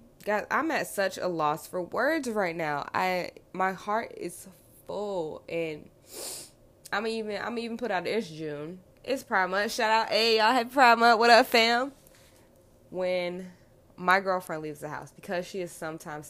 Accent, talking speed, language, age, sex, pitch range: American, 165 wpm, English, 20-39, female, 150-190 Hz